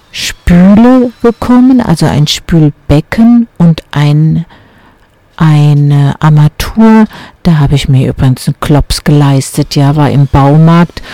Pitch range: 155-195 Hz